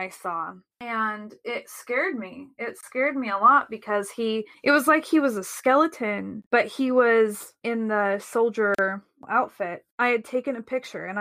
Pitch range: 210-255 Hz